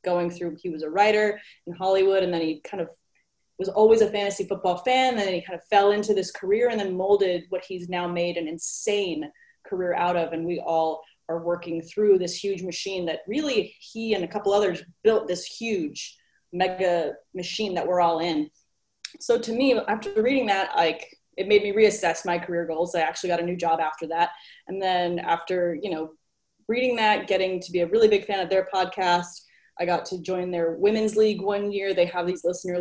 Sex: female